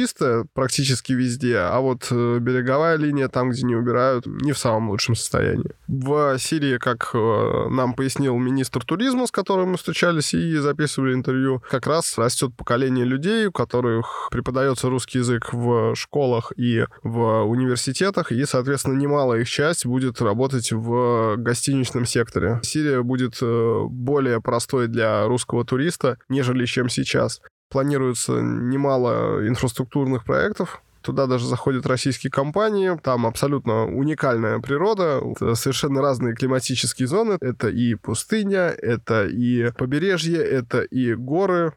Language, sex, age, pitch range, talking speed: Russian, male, 20-39, 120-145 Hz, 130 wpm